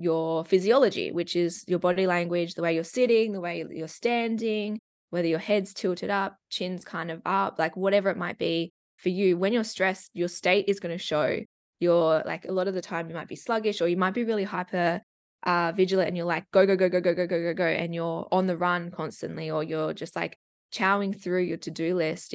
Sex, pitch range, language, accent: female, 170-205 Hz, English, Australian